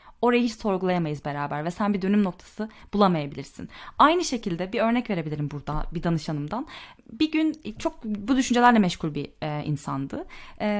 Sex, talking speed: female, 155 wpm